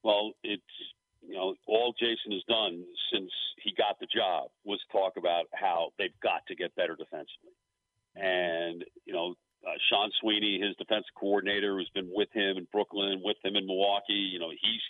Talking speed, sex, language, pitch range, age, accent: 185 wpm, male, English, 100-135 Hz, 50-69, American